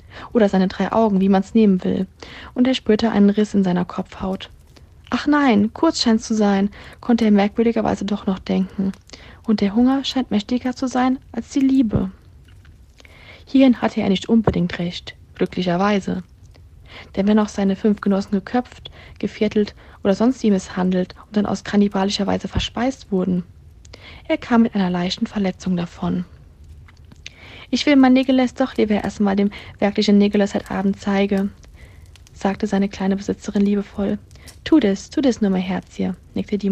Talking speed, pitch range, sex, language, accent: 165 wpm, 185-230 Hz, female, German, German